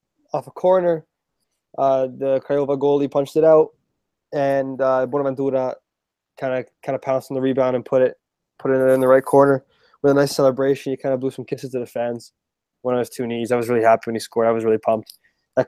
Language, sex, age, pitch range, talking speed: English, male, 20-39, 120-140 Hz, 230 wpm